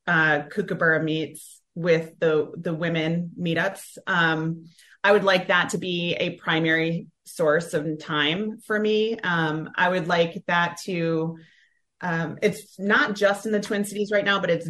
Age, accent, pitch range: 30-49, American, 165-200 Hz